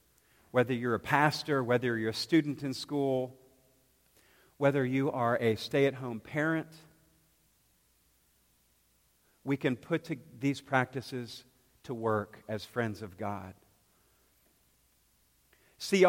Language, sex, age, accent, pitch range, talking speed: English, male, 50-69, American, 115-150 Hz, 110 wpm